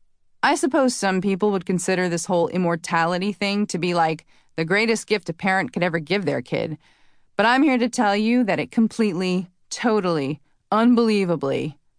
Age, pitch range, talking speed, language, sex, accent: 30-49, 170-230 Hz, 170 wpm, English, female, American